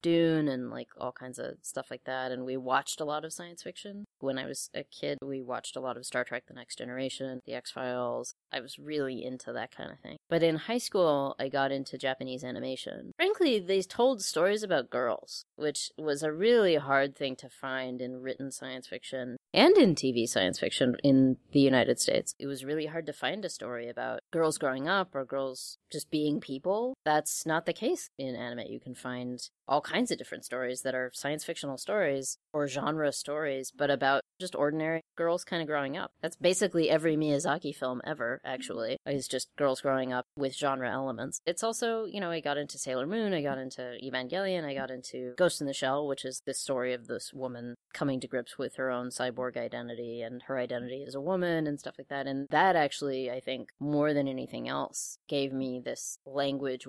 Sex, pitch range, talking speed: female, 130-155 Hz, 210 wpm